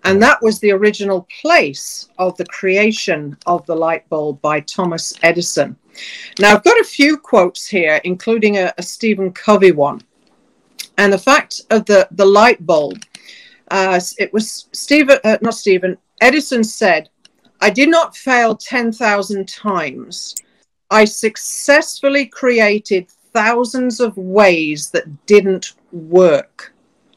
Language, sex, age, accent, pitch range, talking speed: English, female, 50-69, British, 185-245 Hz, 135 wpm